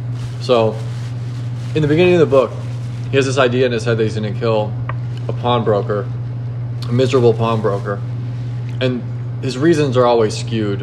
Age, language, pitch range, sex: 20-39, English, 115-120 Hz, male